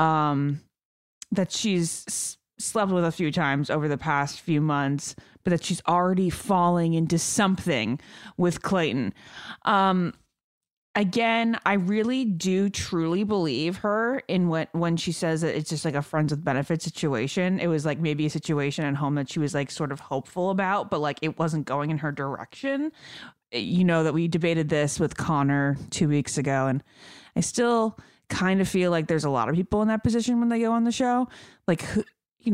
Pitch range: 150-195 Hz